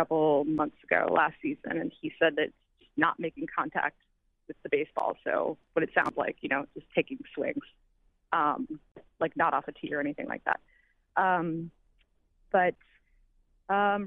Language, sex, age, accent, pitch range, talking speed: English, female, 20-39, American, 170-245 Hz, 160 wpm